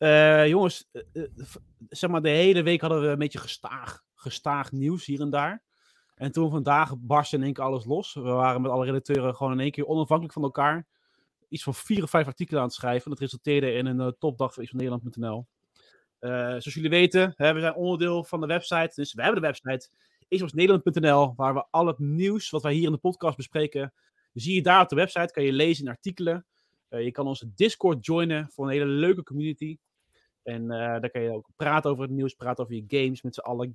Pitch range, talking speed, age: 130-170 Hz, 225 wpm, 30-49